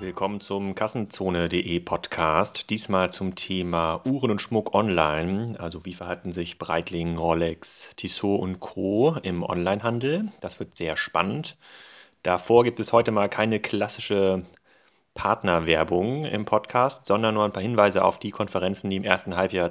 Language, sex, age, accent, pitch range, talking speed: German, male, 30-49, German, 90-105 Hz, 145 wpm